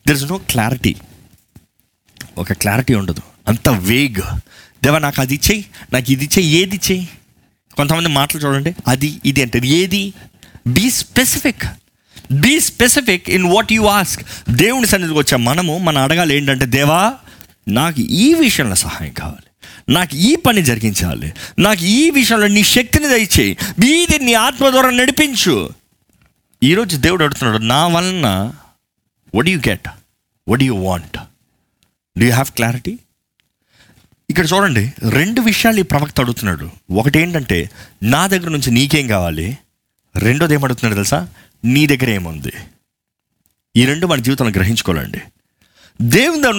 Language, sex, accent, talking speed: Telugu, male, native, 140 wpm